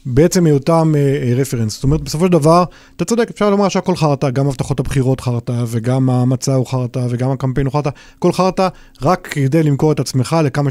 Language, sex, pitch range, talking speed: Hebrew, male, 135-175 Hz, 190 wpm